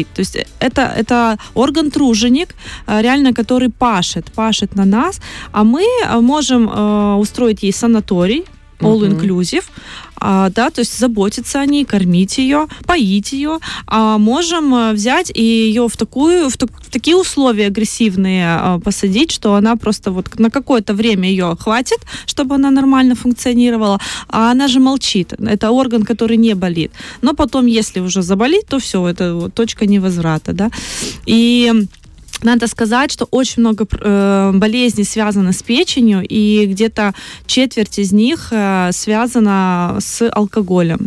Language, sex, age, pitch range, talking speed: Russian, female, 20-39, 200-250 Hz, 140 wpm